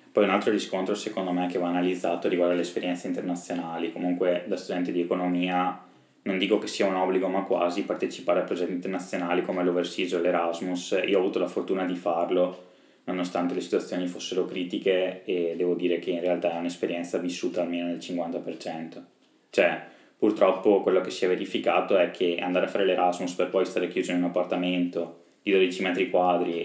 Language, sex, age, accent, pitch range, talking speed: Italian, male, 20-39, native, 90-95 Hz, 180 wpm